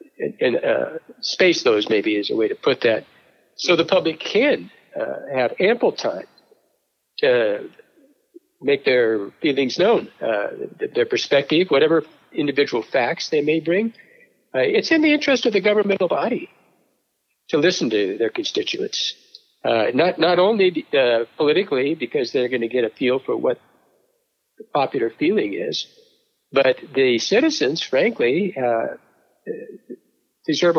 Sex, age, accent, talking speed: male, 60-79, American, 140 wpm